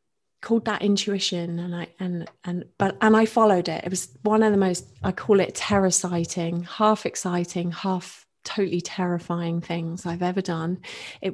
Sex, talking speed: female, 175 wpm